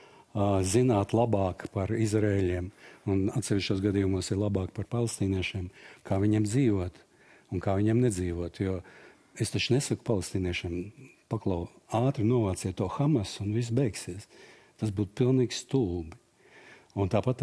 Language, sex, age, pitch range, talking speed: English, male, 60-79, 95-120 Hz, 125 wpm